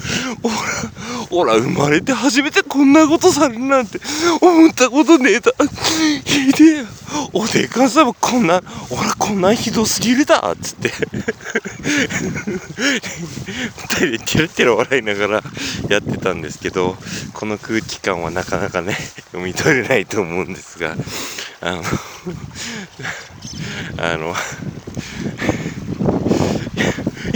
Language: Japanese